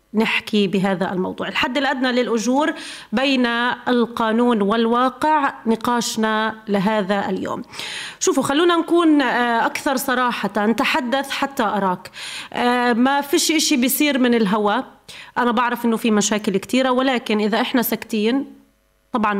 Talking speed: 115 wpm